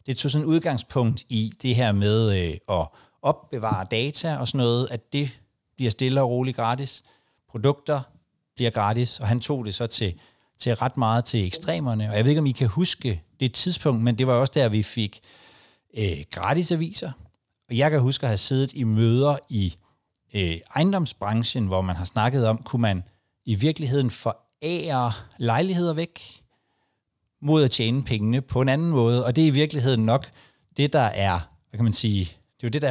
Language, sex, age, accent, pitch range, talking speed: Danish, male, 60-79, native, 105-140 Hz, 195 wpm